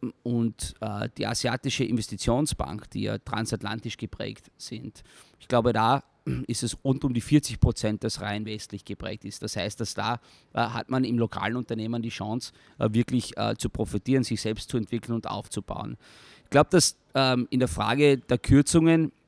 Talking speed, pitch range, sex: 175 wpm, 110-125 Hz, male